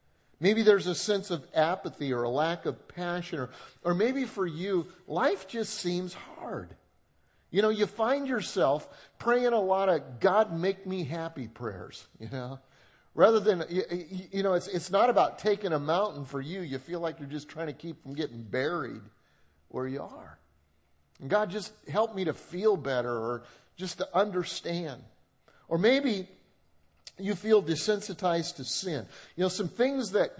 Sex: male